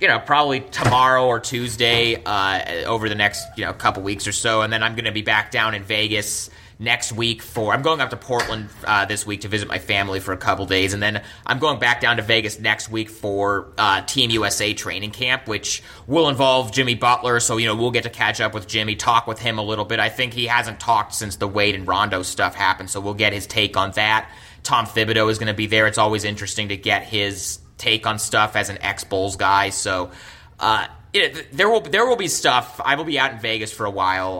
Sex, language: male, English